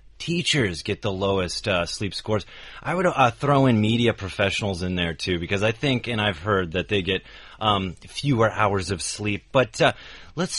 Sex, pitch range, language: male, 100-130 Hz, Chinese